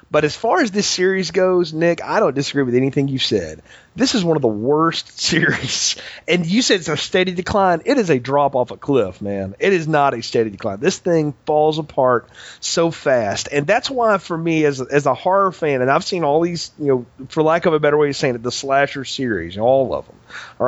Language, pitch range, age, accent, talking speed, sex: English, 130-180 Hz, 30-49, American, 240 wpm, male